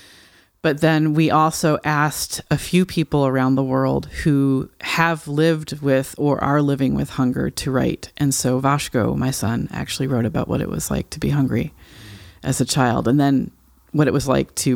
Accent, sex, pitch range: American, female, 130-160 Hz